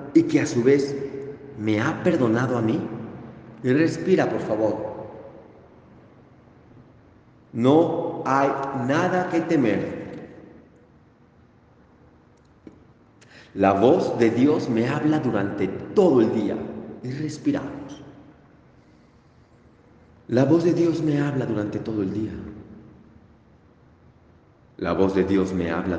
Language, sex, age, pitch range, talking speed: Spanish, male, 40-59, 95-140 Hz, 105 wpm